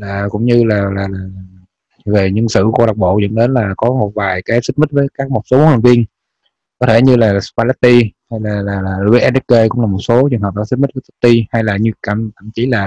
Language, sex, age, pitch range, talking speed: Vietnamese, male, 20-39, 100-120 Hz, 250 wpm